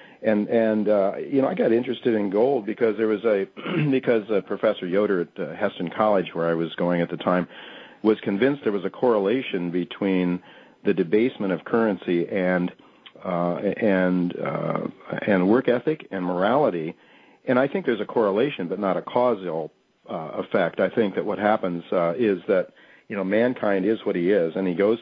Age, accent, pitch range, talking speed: 50-69, American, 85-110 Hz, 190 wpm